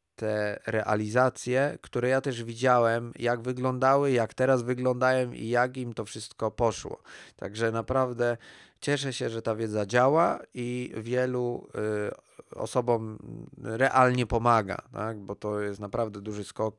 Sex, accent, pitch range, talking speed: male, native, 100-125 Hz, 135 wpm